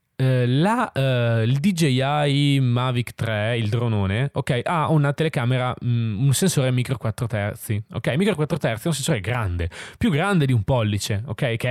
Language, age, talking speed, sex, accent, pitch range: Italian, 20-39, 175 wpm, male, native, 115-145 Hz